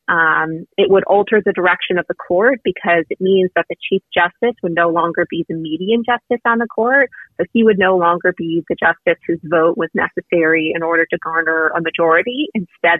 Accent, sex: American, female